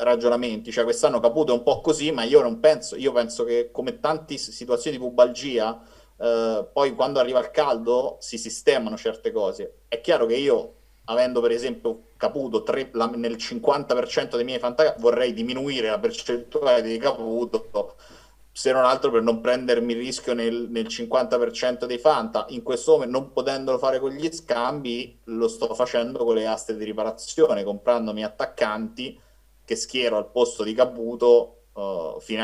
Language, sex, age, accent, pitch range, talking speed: Italian, male, 30-49, native, 115-155 Hz, 165 wpm